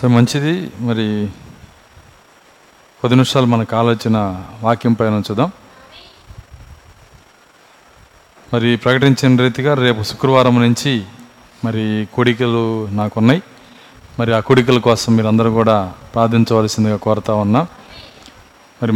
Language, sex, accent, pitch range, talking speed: Telugu, male, native, 115-135 Hz, 90 wpm